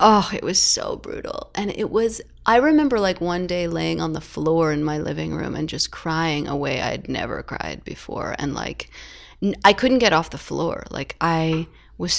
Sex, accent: female, American